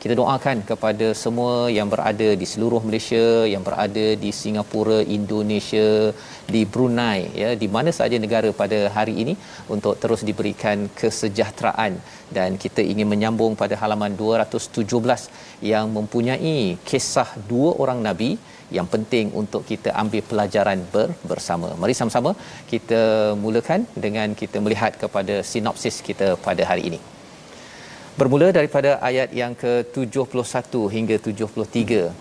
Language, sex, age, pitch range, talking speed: Malayalam, male, 40-59, 105-120 Hz, 125 wpm